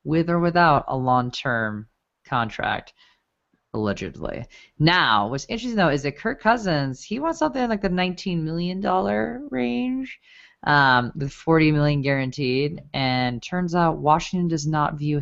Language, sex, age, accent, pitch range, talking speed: English, female, 20-39, American, 130-180 Hz, 140 wpm